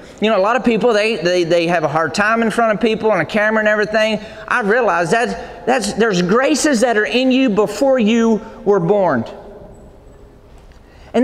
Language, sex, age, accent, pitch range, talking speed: English, male, 40-59, American, 195-230 Hz, 200 wpm